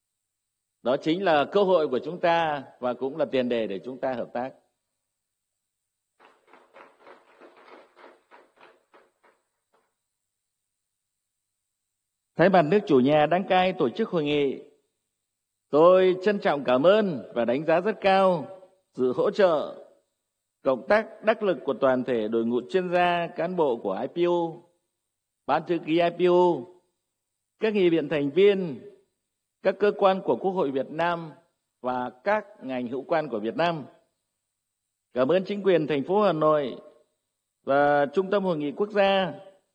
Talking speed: 145 wpm